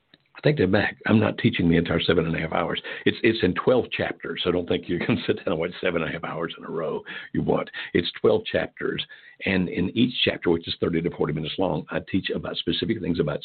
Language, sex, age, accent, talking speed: English, male, 60-79, American, 255 wpm